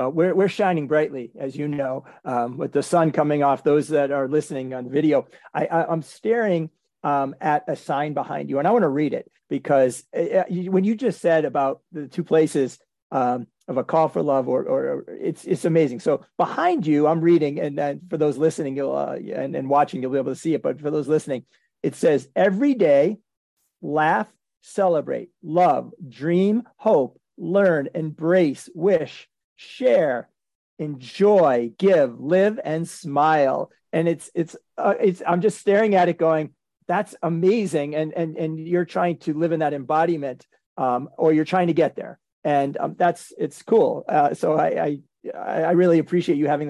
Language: English